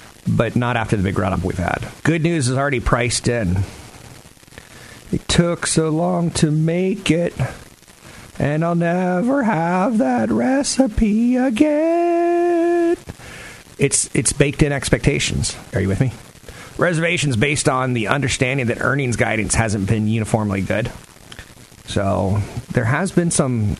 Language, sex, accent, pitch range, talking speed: English, male, American, 105-160 Hz, 135 wpm